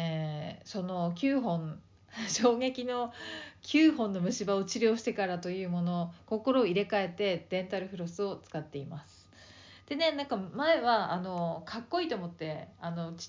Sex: female